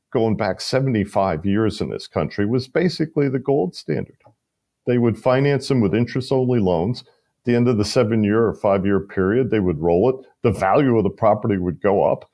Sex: male